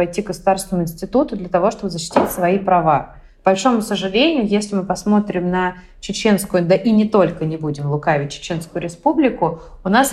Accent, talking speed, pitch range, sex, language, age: native, 170 wpm, 165-190 Hz, female, Russian, 20-39